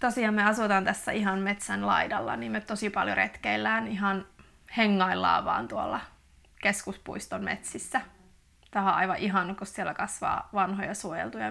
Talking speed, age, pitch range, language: 140 wpm, 20-39, 185-225 Hz, Finnish